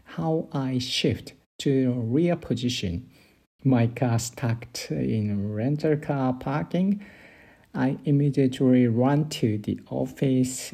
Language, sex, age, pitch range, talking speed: English, male, 50-69, 110-140 Hz, 105 wpm